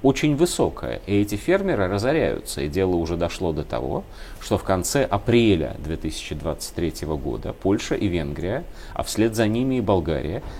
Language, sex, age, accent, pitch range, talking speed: Russian, male, 30-49, native, 85-125 Hz, 155 wpm